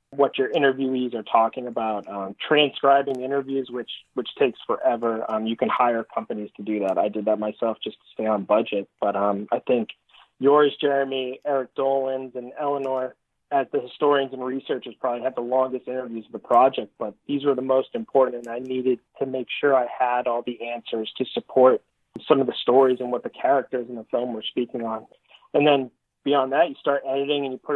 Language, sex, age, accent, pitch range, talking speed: English, male, 30-49, American, 115-135 Hz, 210 wpm